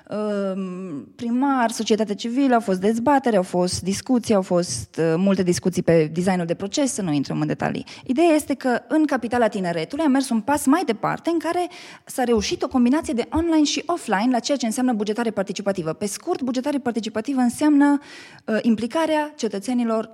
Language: Romanian